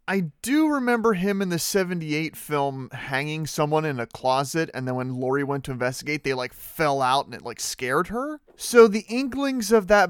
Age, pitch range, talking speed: 30-49, 130-180 Hz, 200 wpm